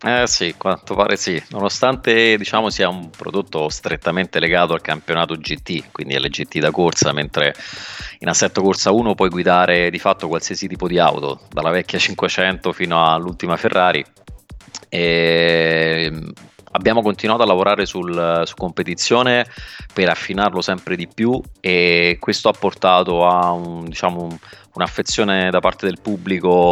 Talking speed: 145 wpm